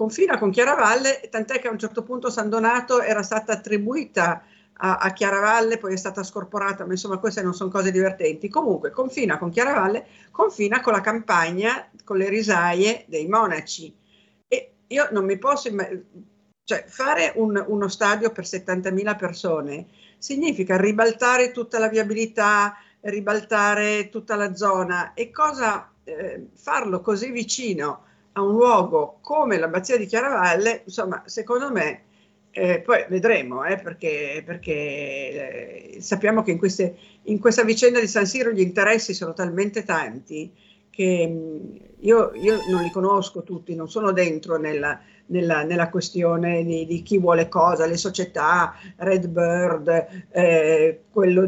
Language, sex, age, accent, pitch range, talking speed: Italian, female, 50-69, native, 175-225 Hz, 150 wpm